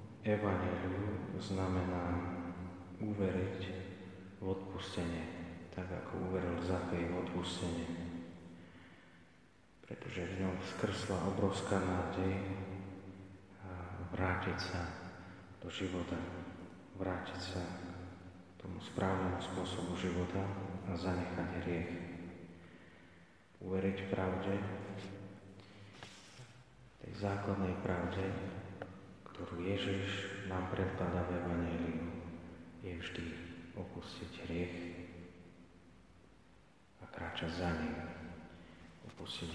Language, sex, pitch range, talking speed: Slovak, male, 85-95 Hz, 75 wpm